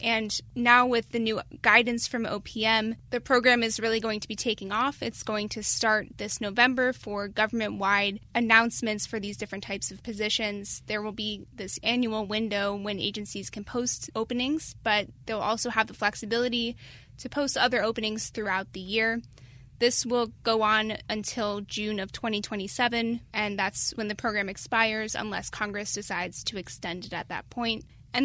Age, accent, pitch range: 10-29, American, 205-235 Hz